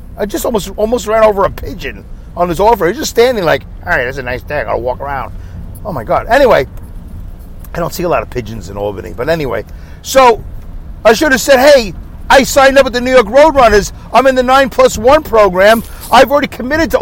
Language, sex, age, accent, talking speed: English, male, 50-69, American, 240 wpm